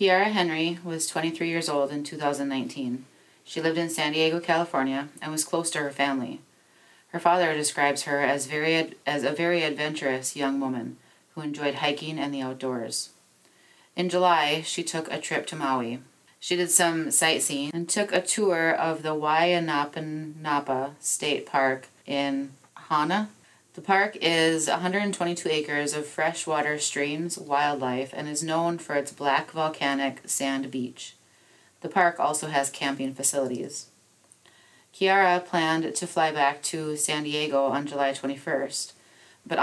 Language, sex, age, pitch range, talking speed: English, female, 30-49, 140-165 Hz, 145 wpm